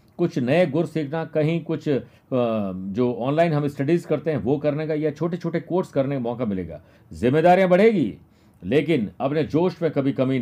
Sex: male